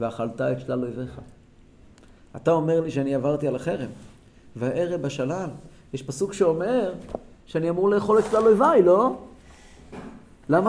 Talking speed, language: 135 wpm, Hebrew